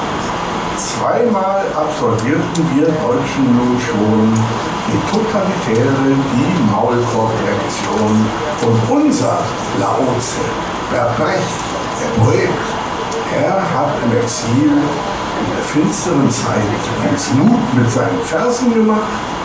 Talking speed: 95 wpm